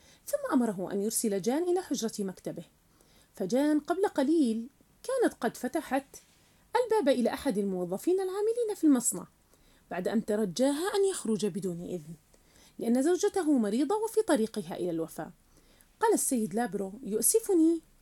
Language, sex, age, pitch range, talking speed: Arabic, female, 30-49, 200-290 Hz, 130 wpm